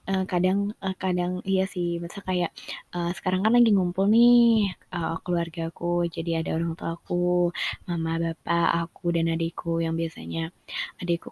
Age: 20-39